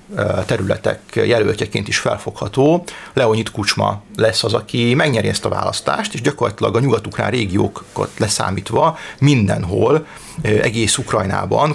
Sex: male